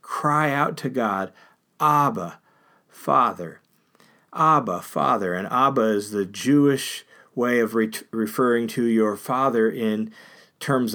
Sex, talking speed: male, 120 wpm